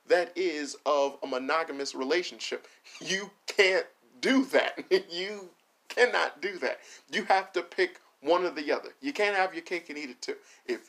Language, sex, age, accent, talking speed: English, male, 40-59, American, 175 wpm